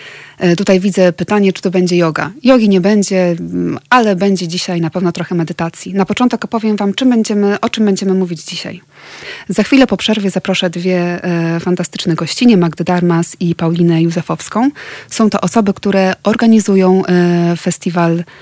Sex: female